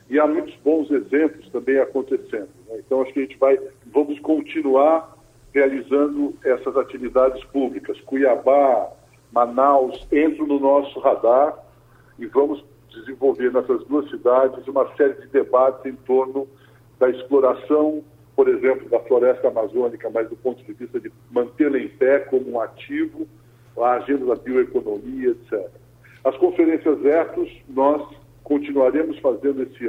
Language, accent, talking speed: Portuguese, Brazilian, 140 wpm